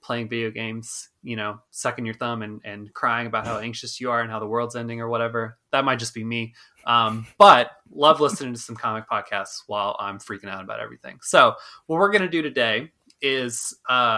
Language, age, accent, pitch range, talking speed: English, 20-39, American, 115-135 Hz, 210 wpm